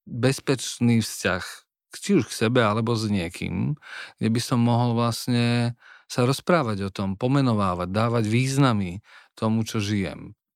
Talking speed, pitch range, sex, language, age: 135 wpm, 100-120 Hz, male, Slovak, 40-59